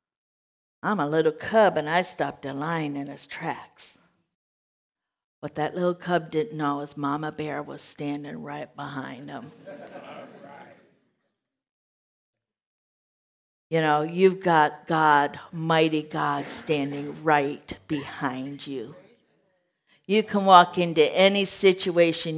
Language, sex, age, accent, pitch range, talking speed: English, female, 50-69, American, 150-200 Hz, 115 wpm